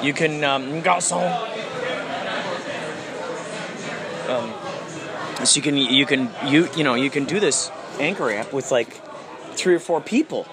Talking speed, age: 140 wpm, 30-49